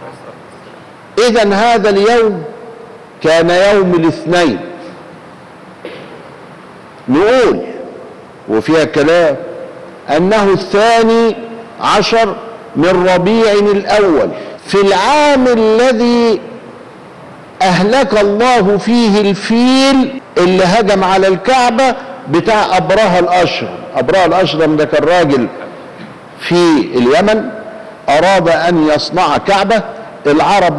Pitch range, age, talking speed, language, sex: 170-230 Hz, 50-69, 80 wpm, Arabic, male